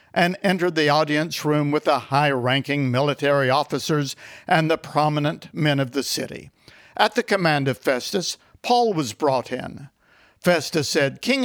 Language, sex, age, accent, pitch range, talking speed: English, male, 60-79, American, 140-185 Hz, 150 wpm